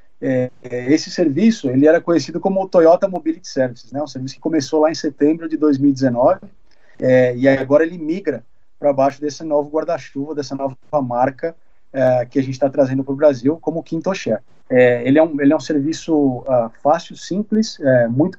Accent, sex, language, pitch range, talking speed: Brazilian, male, Portuguese, 130-160 Hz, 185 wpm